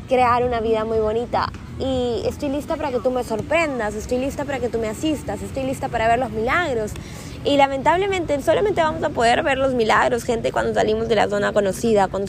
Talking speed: 210 wpm